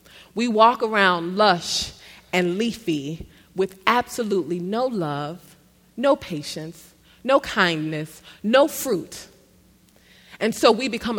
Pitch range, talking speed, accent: 165-215 Hz, 105 wpm, American